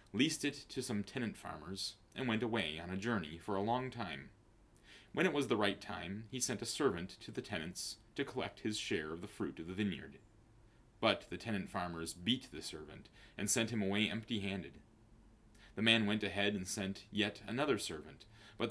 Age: 30-49